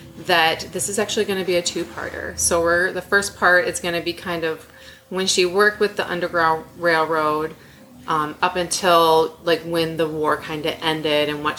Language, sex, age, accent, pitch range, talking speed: English, female, 30-49, American, 160-200 Hz, 200 wpm